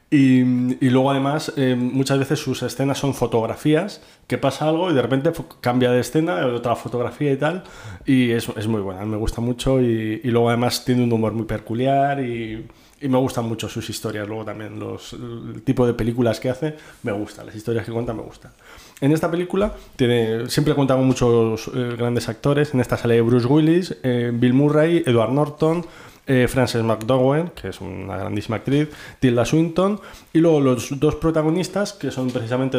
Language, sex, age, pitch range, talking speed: Spanish, male, 20-39, 115-145 Hz, 190 wpm